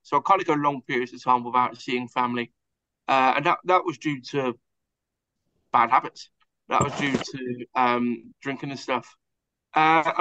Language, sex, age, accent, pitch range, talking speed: English, male, 20-39, British, 120-140 Hz, 175 wpm